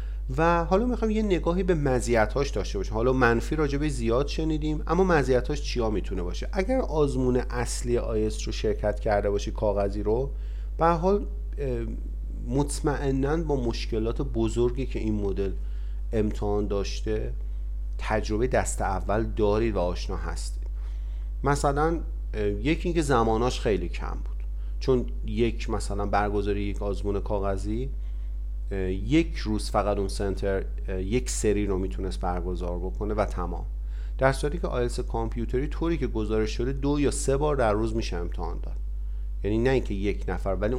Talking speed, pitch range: 145 wpm, 95-125 Hz